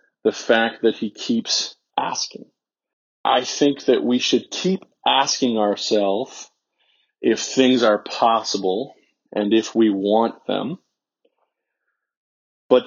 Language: English